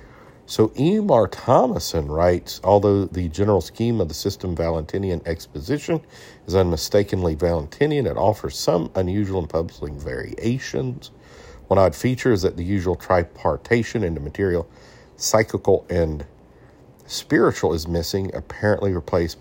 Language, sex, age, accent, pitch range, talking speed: English, male, 50-69, American, 80-105 Hz, 125 wpm